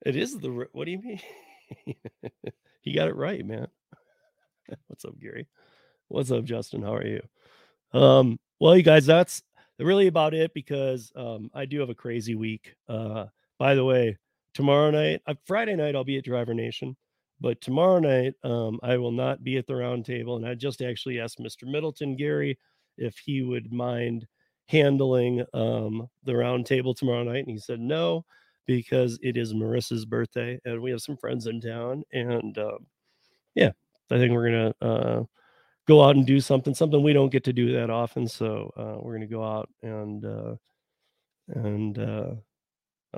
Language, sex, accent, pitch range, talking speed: English, male, American, 115-145 Hz, 180 wpm